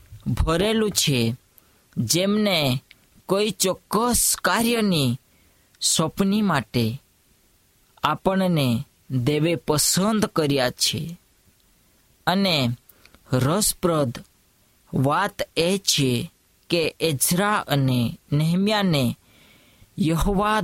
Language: Hindi